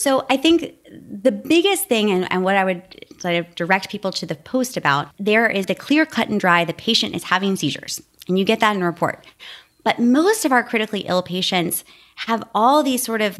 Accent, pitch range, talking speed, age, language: American, 170-225 Hz, 225 wpm, 20-39, English